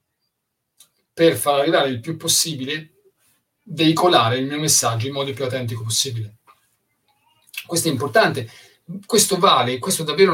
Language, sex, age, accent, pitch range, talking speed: Italian, male, 30-49, native, 115-160 Hz, 130 wpm